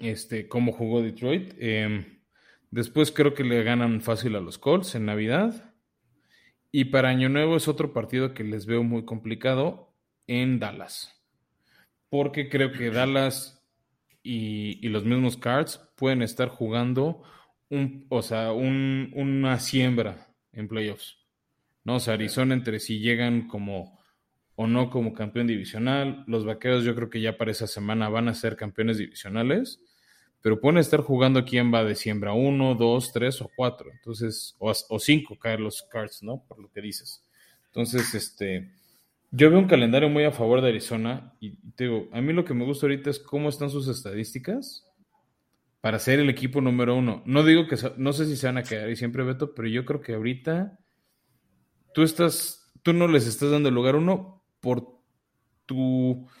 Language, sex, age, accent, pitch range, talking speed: Spanish, male, 20-39, Mexican, 115-140 Hz, 175 wpm